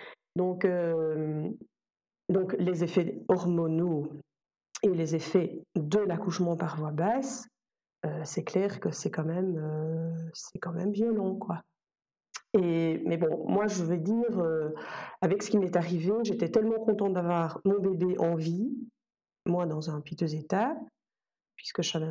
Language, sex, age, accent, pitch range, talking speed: French, female, 40-59, French, 165-200 Hz, 155 wpm